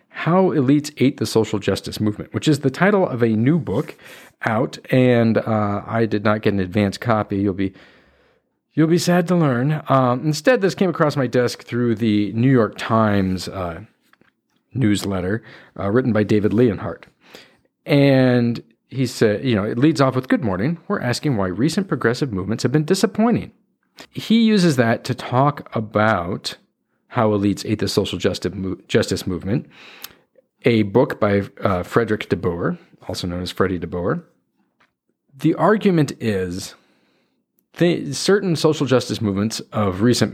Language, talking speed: English, 160 wpm